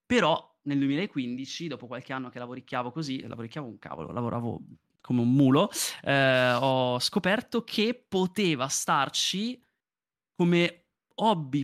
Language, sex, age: Italian, male, 20-39